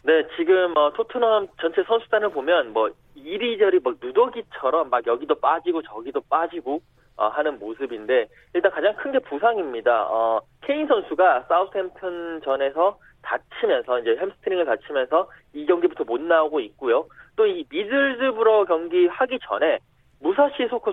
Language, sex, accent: Korean, male, native